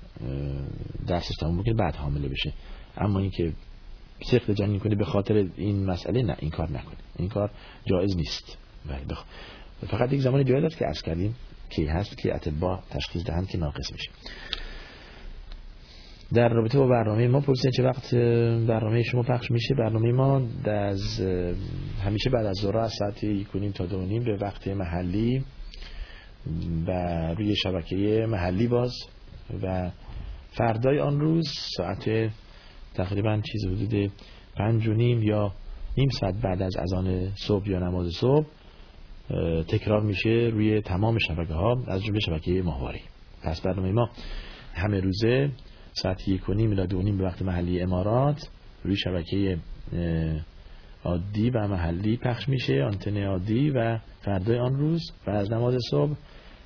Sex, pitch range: male, 90-115 Hz